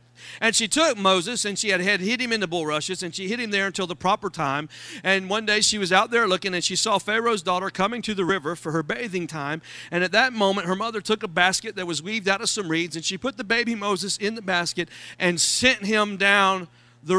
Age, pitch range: 40-59, 170-215 Hz